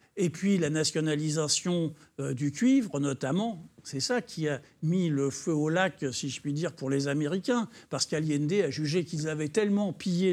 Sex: male